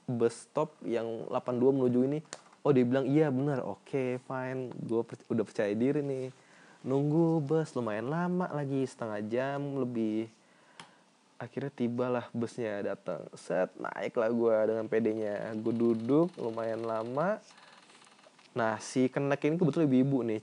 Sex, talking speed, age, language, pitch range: male, 145 wpm, 20-39, Indonesian, 115-145 Hz